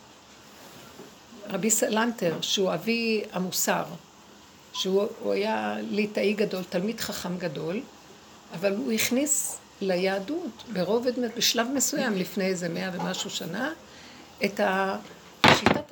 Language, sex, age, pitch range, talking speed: Hebrew, female, 60-79, 190-235 Hz, 100 wpm